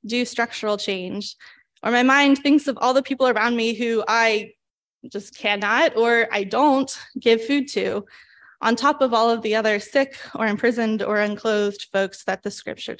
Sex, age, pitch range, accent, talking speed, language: female, 20-39, 210-255 Hz, American, 180 wpm, English